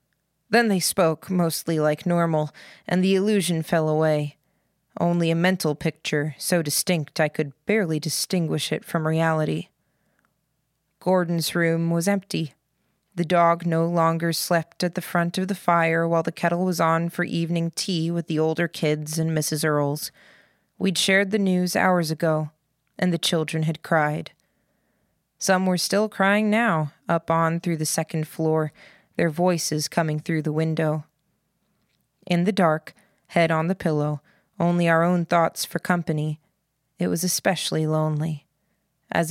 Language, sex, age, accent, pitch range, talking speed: English, female, 20-39, American, 155-180 Hz, 155 wpm